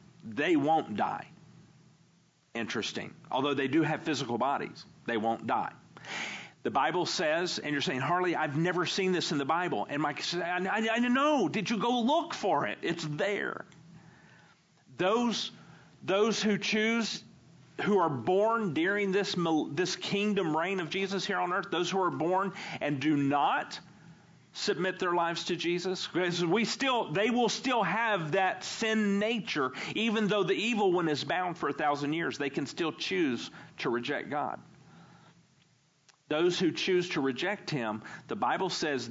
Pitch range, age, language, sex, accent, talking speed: 155-195 Hz, 50-69, English, male, American, 165 wpm